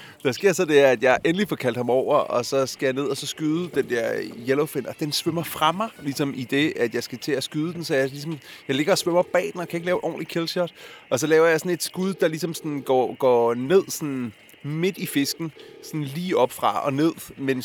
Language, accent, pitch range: Danish, native, 130-170 Hz